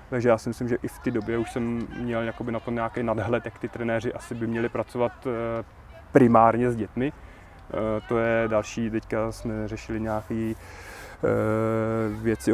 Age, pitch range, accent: 20-39, 115-125 Hz, native